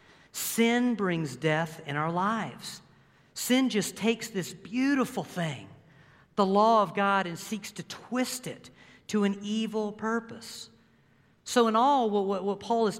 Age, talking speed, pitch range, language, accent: 50-69, 145 wpm, 170-230 Hz, English, American